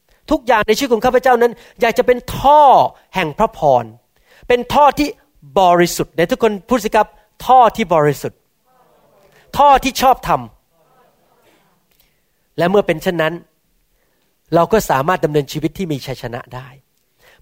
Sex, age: male, 30-49